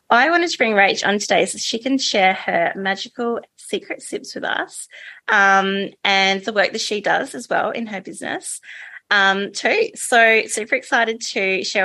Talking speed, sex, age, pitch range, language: 180 wpm, female, 20-39, 190-250 Hz, English